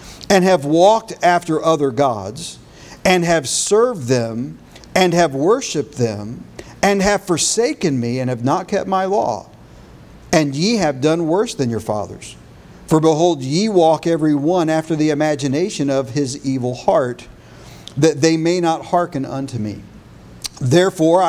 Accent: American